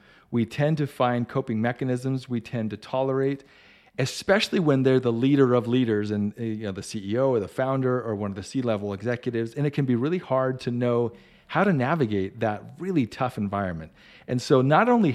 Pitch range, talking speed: 110-140 Hz, 200 wpm